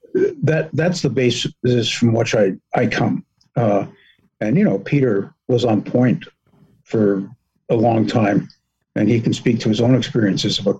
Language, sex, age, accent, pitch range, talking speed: English, male, 50-69, American, 120-160 Hz, 165 wpm